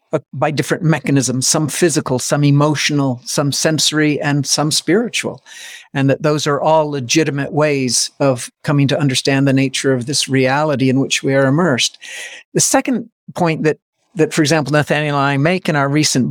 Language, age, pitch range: English, 50-69, 140-180 Hz